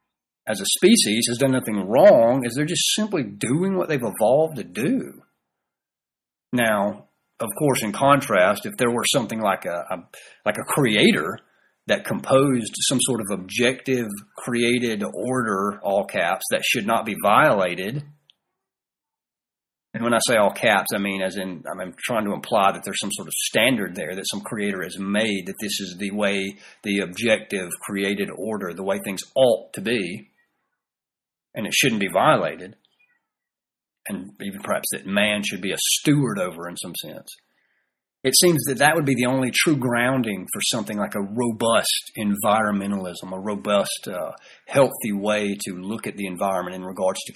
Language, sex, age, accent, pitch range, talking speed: English, male, 40-59, American, 100-135 Hz, 170 wpm